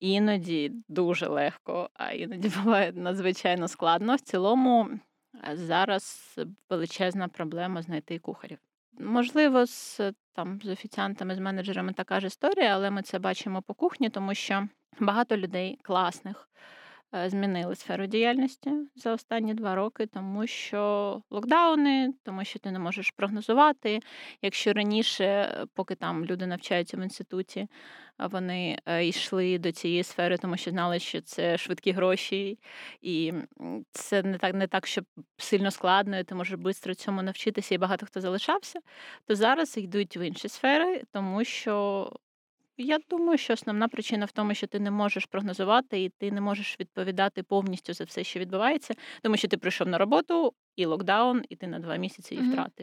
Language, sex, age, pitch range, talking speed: Ukrainian, female, 20-39, 190-235 Hz, 155 wpm